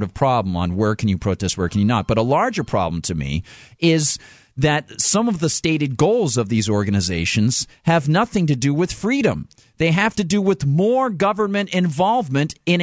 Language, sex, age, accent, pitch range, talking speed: English, male, 50-69, American, 115-175 Hz, 195 wpm